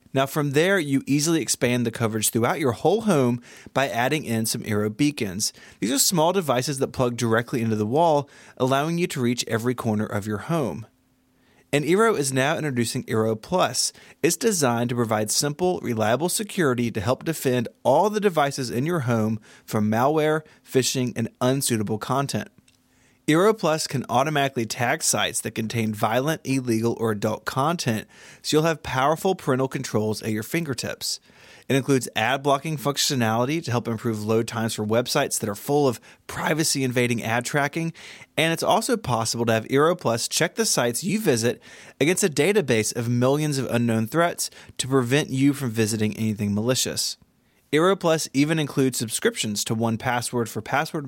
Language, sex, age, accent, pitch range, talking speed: English, male, 30-49, American, 115-150 Hz, 170 wpm